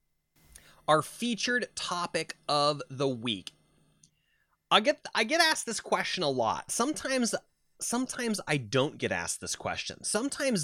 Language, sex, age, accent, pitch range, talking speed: English, male, 30-49, American, 135-210 Hz, 135 wpm